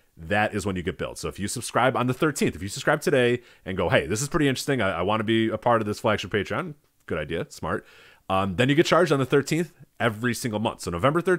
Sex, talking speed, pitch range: male, 265 wpm, 85-120 Hz